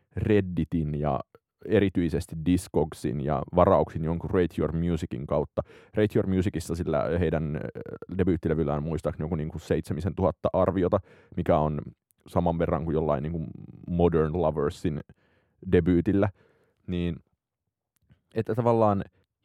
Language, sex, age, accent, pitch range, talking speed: Finnish, male, 30-49, native, 80-100 Hz, 110 wpm